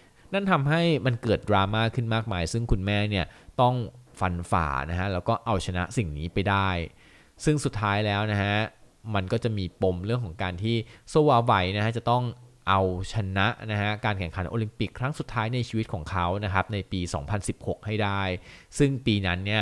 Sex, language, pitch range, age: male, Thai, 90-115 Hz, 20-39